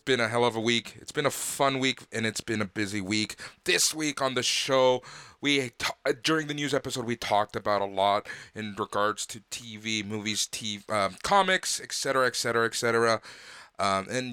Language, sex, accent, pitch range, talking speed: English, male, American, 105-135 Hz, 190 wpm